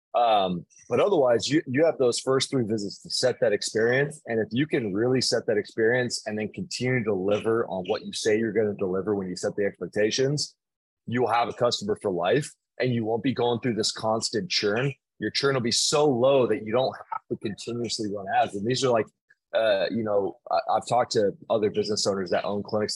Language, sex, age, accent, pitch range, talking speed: English, male, 20-39, American, 105-135 Hz, 225 wpm